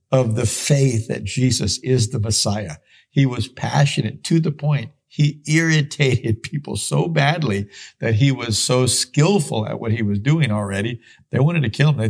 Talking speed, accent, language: 180 wpm, American, English